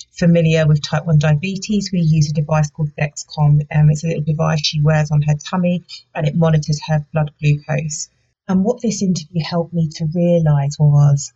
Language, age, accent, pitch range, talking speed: English, 30-49, British, 155-175 Hz, 195 wpm